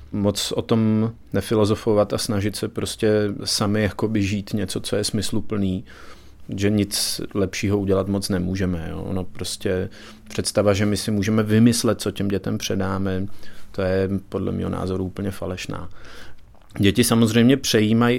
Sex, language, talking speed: male, Czech, 140 wpm